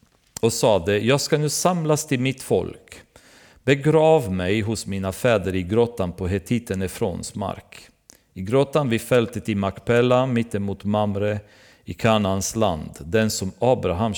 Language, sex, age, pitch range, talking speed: Swedish, male, 40-59, 95-120 Hz, 145 wpm